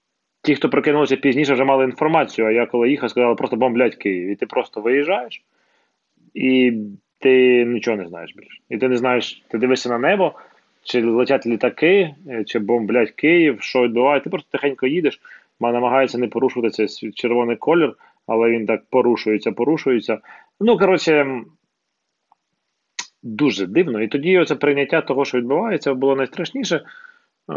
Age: 20-39